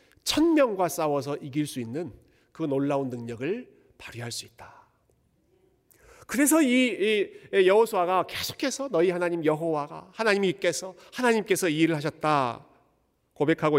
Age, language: 40-59, Korean